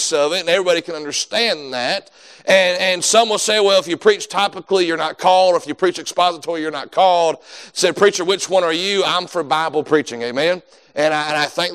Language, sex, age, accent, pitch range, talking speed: English, male, 40-59, American, 155-185 Hz, 220 wpm